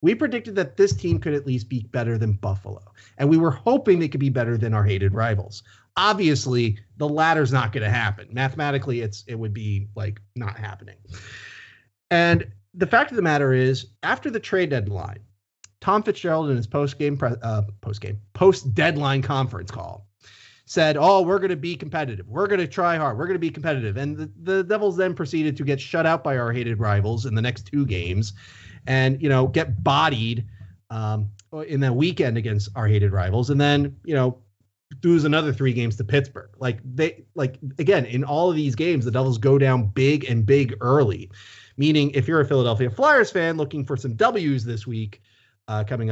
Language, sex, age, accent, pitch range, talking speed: English, male, 30-49, American, 105-150 Hz, 195 wpm